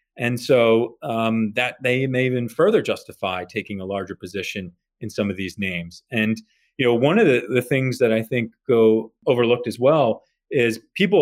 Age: 30-49